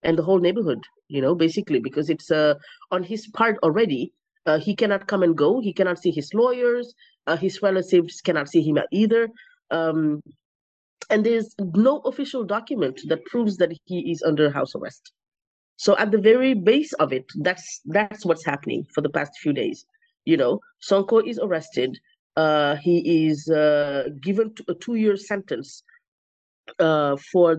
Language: English